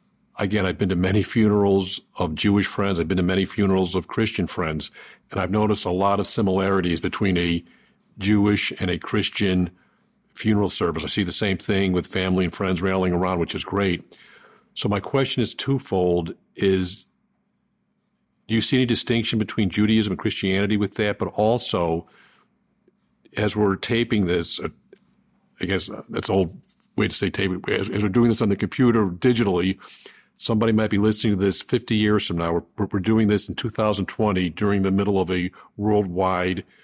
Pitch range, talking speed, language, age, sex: 95-110 Hz, 175 wpm, English, 50-69, male